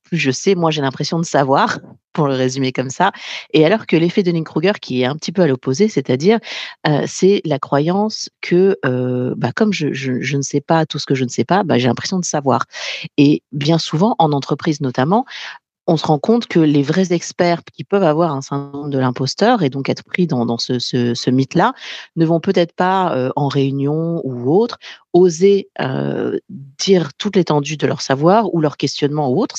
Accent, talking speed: French, 215 wpm